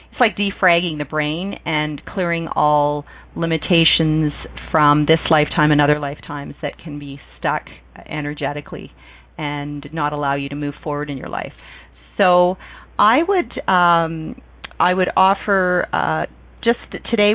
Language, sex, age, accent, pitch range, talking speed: English, female, 40-59, American, 145-185 Hz, 140 wpm